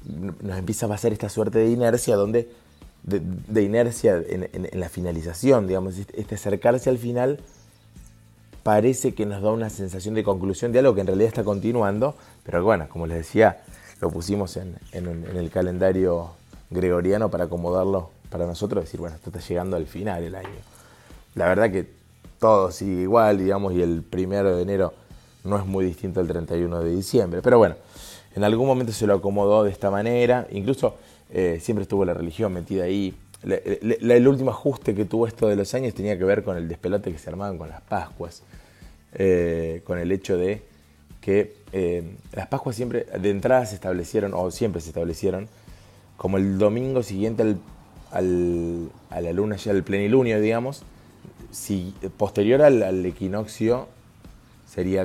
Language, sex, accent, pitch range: Spanish, male, Argentinian, 90-110 Hz